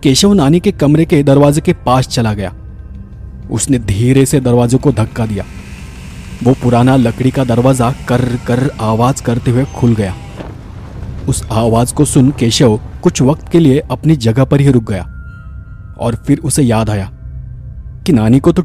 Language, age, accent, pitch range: Hindi, 30-49, native, 110-140 Hz